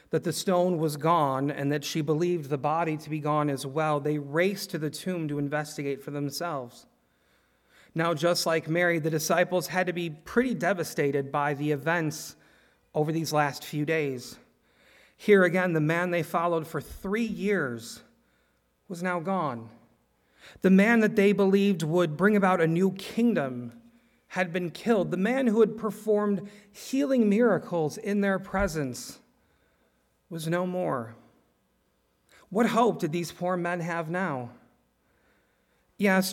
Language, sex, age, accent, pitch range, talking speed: English, male, 40-59, American, 145-190 Hz, 150 wpm